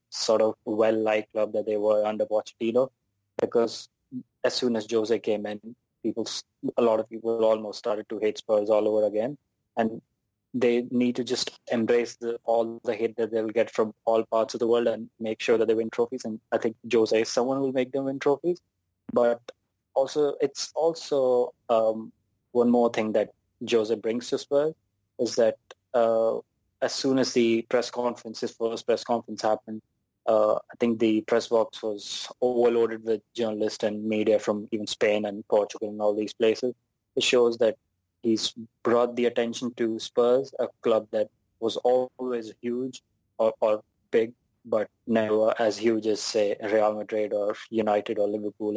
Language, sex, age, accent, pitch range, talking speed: English, male, 20-39, Indian, 110-120 Hz, 180 wpm